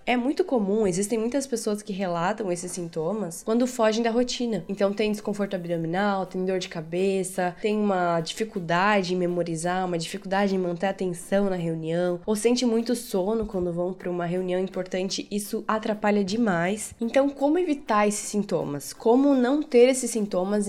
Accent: Brazilian